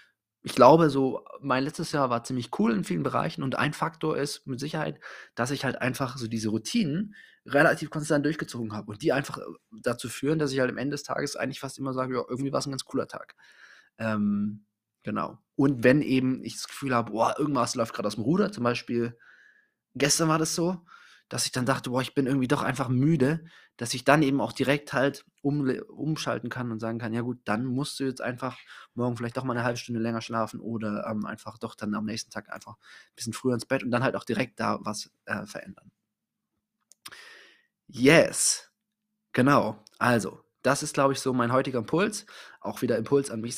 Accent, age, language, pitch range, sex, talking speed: German, 20-39, German, 115-140 Hz, male, 210 wpm